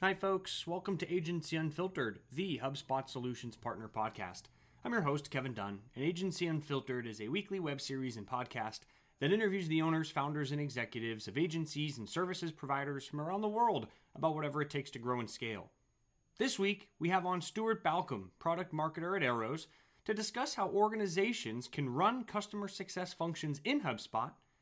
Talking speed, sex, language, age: 175 wpm, male, English, 30-49